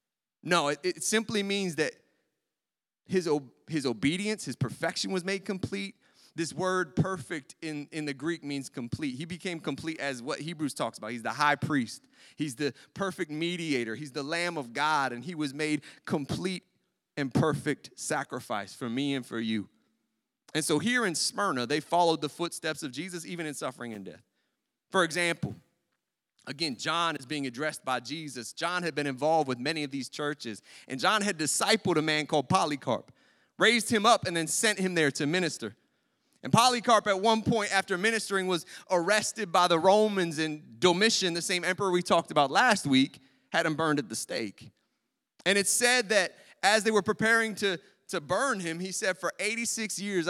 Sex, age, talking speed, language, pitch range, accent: male, 30-49, 185 wpm, English, 145-190 Hz, American